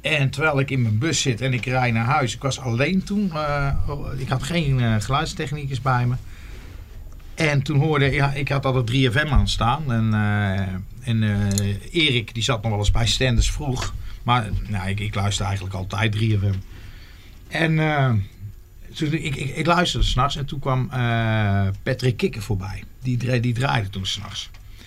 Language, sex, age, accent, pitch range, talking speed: Dutch, male, 50-69, Dutch, 100-145 Hz, 185 wpm